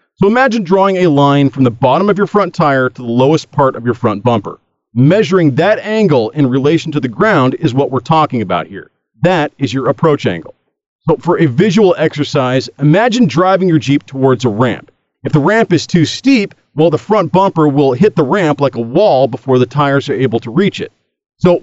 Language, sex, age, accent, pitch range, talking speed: English, male, 40-59, American, 135-185 Hz, 215 wpm